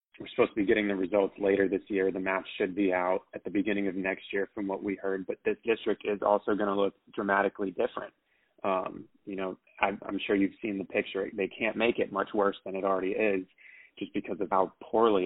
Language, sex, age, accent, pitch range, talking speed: English, male, 20-39, American, 95-105 Hz, 235 wpm